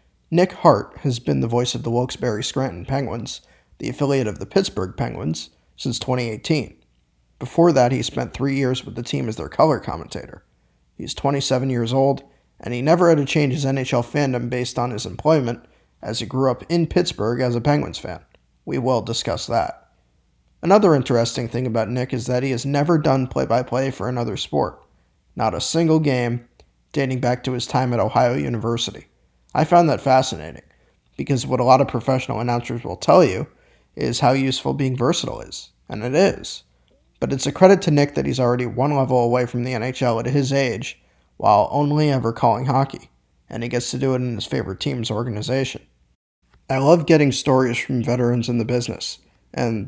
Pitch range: 115-135 Hz